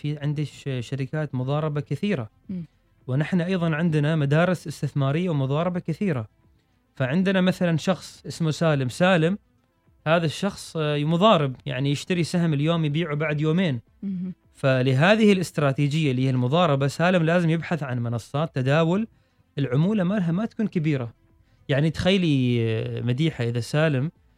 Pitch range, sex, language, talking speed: 130-175 Hz, male, Arabic, 120 wpm